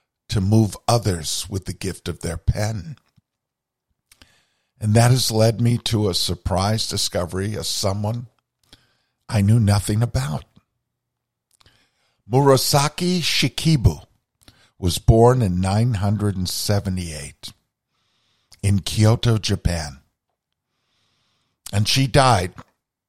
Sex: male